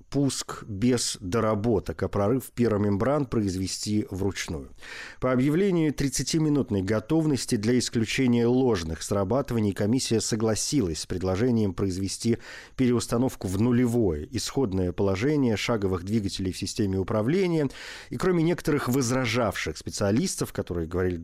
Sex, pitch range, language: male, 95-125 Hz, Russian